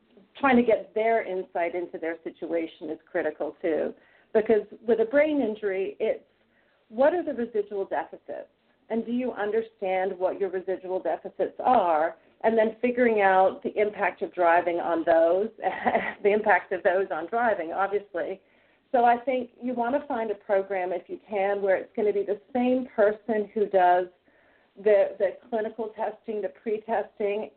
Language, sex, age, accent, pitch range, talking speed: English, female, 40-59, American, 190-225 Hz, 165 wpm